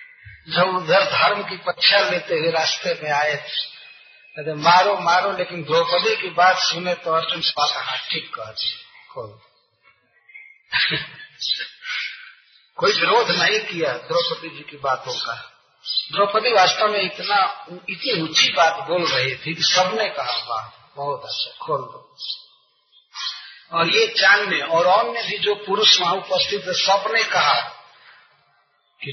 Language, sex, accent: Hindi, male, native